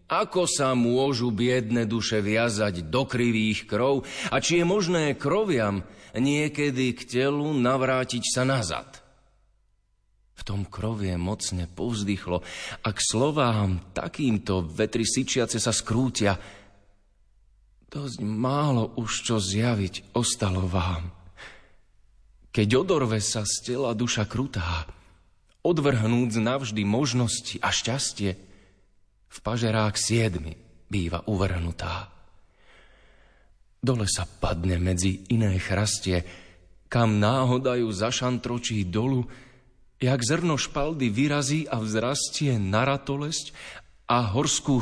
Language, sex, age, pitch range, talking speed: Slovak, male, 30-49, 95-130 Hz, 100 wpm